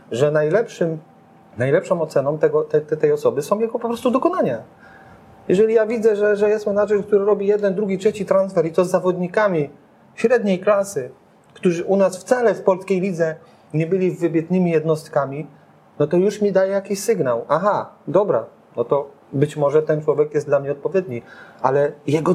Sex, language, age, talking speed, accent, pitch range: male, Polish, 30-49, 165 wpm, native, 150-210 Hz